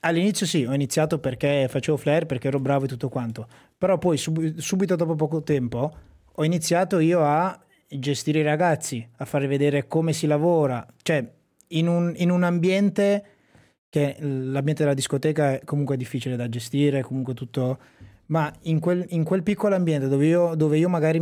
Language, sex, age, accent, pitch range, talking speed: Italian, male, 20-39, native, 135-165 Hz, 175 wpm